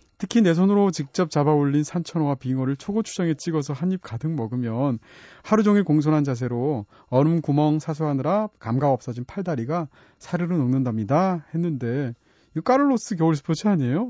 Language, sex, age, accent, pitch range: Korean, male, 30-49, native, 130-185 Hz